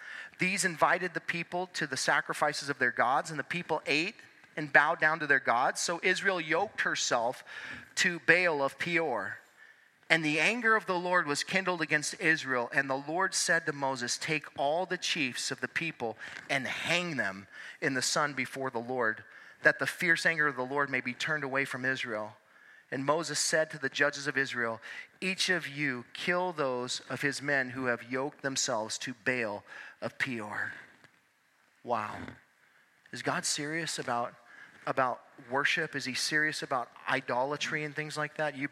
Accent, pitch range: American, 130-165 Hz